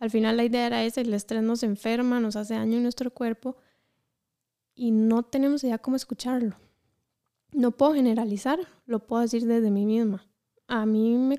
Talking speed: 180 wpm